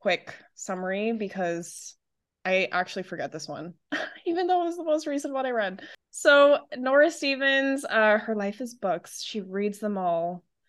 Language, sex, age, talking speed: English, female, 20-39, 170 wpm